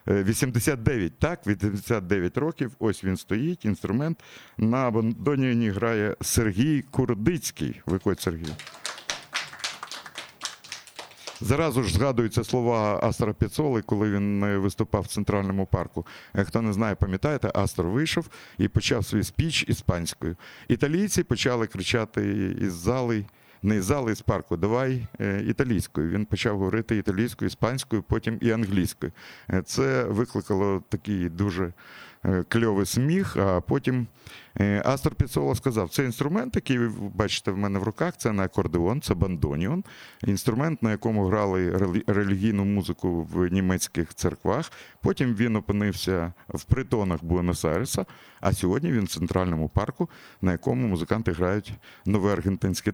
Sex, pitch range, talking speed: male, 95-120 Hz, 125 wpm